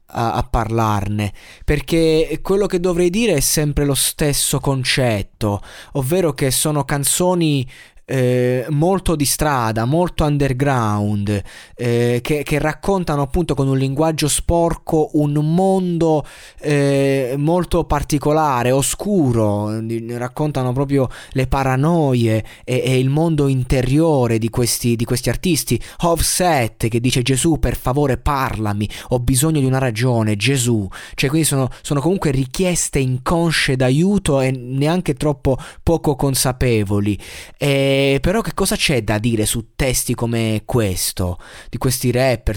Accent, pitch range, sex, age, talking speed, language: native, 115-150 Hz, male, 20-39, 125 wpm, Italian